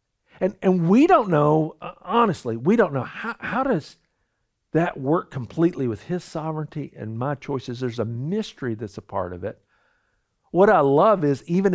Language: English